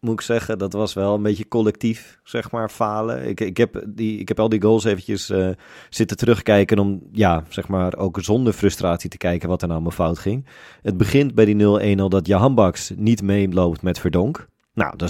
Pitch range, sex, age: 95-110 Hz, male, 30-49